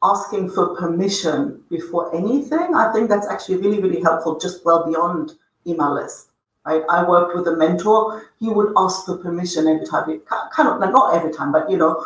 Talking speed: 190 wpm